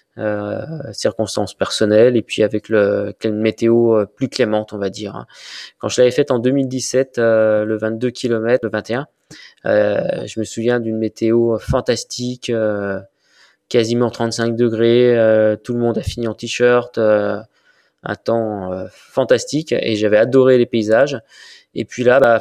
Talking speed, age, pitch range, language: 160 wpm, 20-39, 110-135 Hz, French